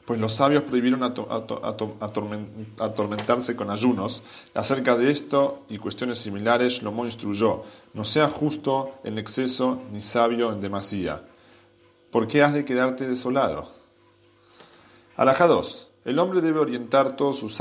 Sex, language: male, English